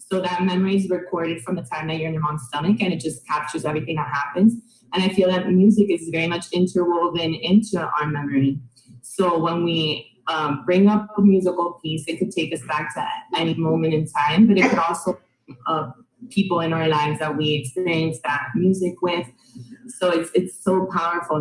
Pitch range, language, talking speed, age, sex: 155-185 Hz, English, 200 wpm, 20-39, female